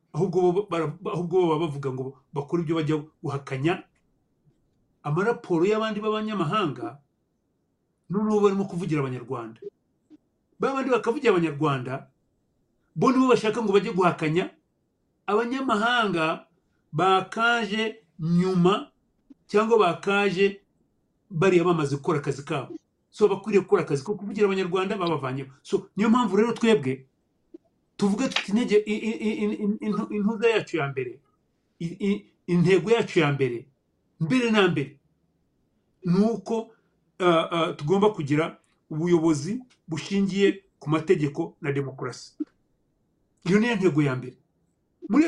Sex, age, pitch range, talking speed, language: male, 40-59, 160-215 Hz, 110 wpm, English